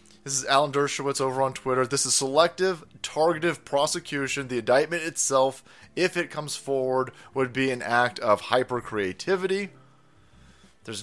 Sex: male